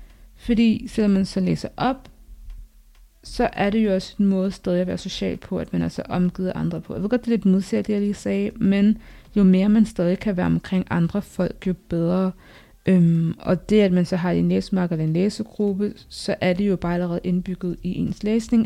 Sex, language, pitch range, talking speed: female, Danish, 185-225 Hz, 220 wpm